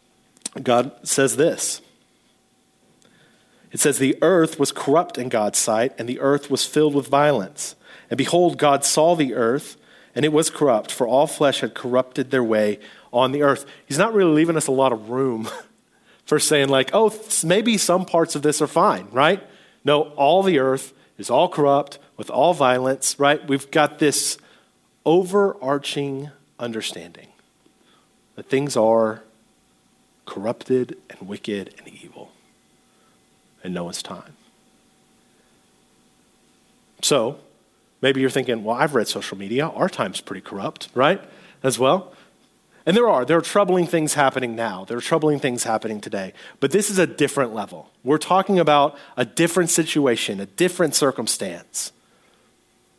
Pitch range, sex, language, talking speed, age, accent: 125-160 Hz, male, English, 150 wpm, 40-59, American